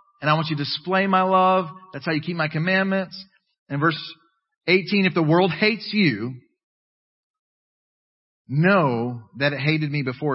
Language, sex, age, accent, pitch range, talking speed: English, male, 40-59, American, 125-180 Hz, 160 wpm